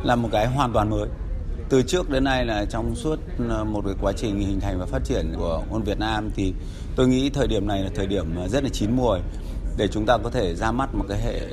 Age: 30-49